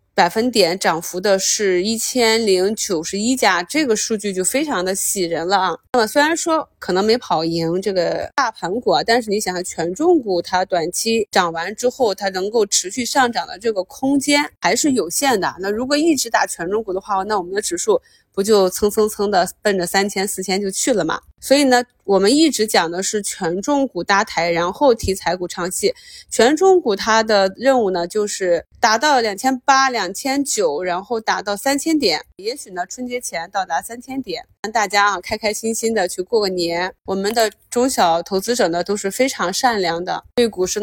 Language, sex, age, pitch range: Chinese, female, 20-39, 185-245 Hz